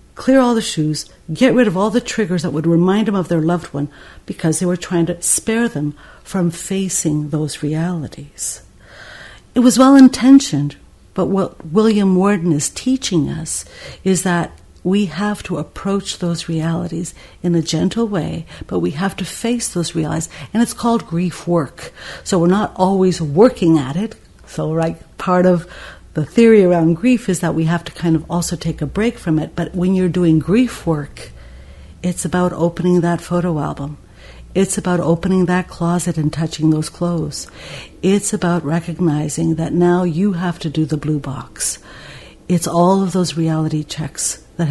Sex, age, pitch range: female, 60-79, 155-190 Hz